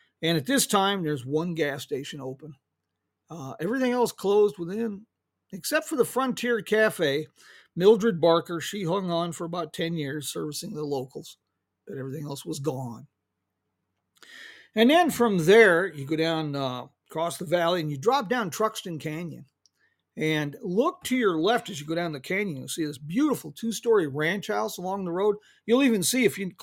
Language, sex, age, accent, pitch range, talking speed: English, male, 50-69, American, 155-225 Hz, 180 wpm